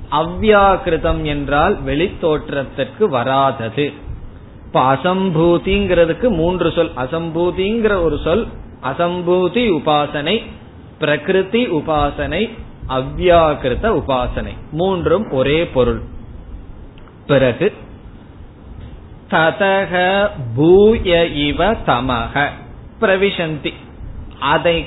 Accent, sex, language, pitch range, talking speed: native, male, Tamil, 135-180 Hz, 50 wpm